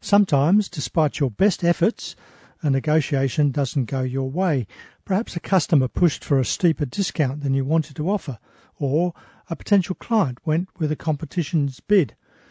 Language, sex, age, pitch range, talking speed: English, male, 50-69, 140-175 Hz, 160 wpm